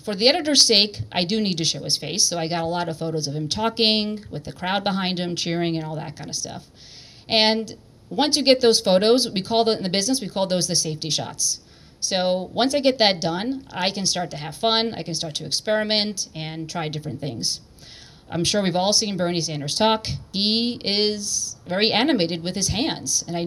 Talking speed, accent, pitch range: 230 wpm, American, 160-205 Hz